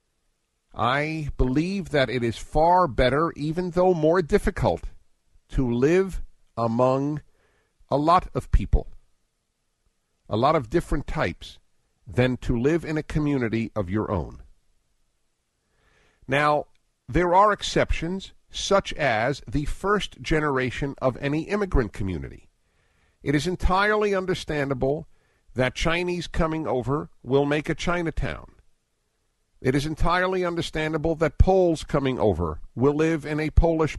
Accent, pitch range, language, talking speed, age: American, 130-160 Hz, English, 125 wpm, 50-69